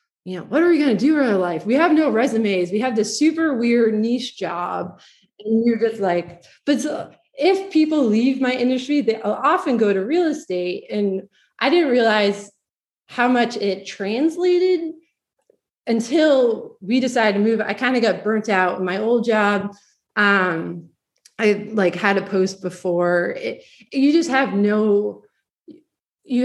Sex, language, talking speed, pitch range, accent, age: female, English, 170 wpm, 195-255 Hz, American, 20-39